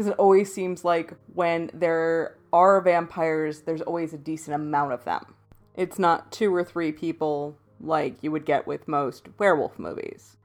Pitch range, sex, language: 155-190 Hz, female, English